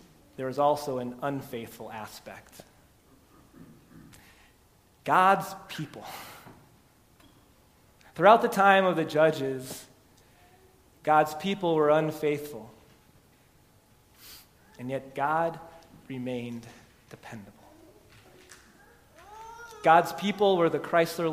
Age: 30-49